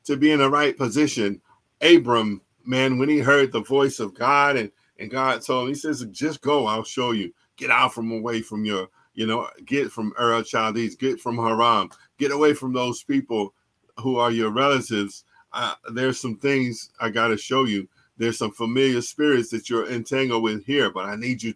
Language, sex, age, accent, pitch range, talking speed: English, male, 50-69, American, 110-135 Hz, 200 wpm